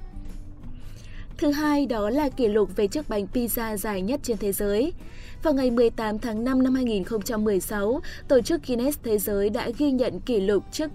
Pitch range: 210-270 Hz